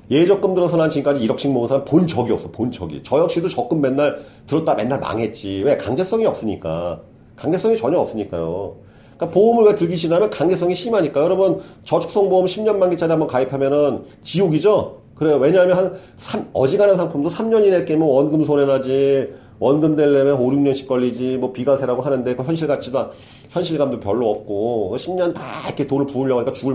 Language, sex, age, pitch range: Korean, male, 40-59, 135-180 Hz